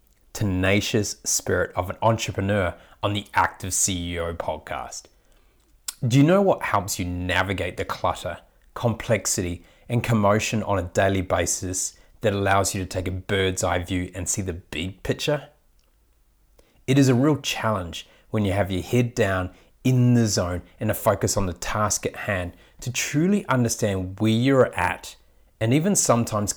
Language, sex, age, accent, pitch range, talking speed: English, male, 30-49, Australian, 90-115 Hz, 160 wpm